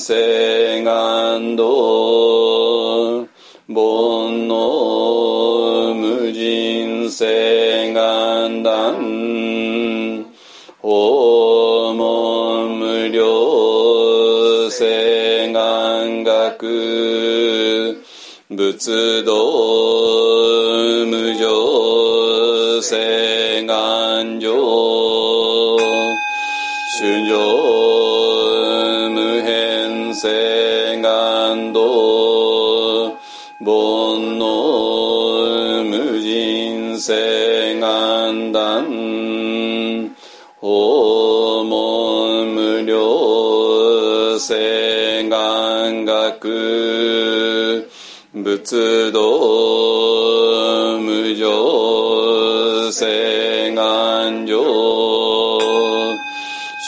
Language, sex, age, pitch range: Japanese, male, 40-59, 110-115 Hz